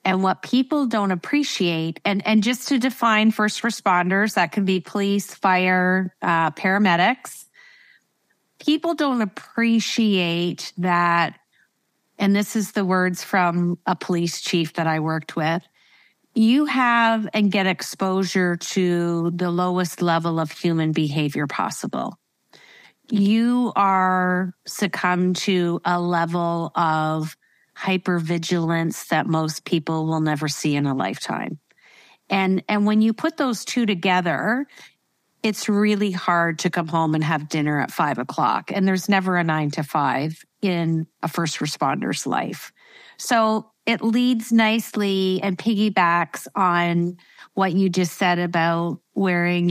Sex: female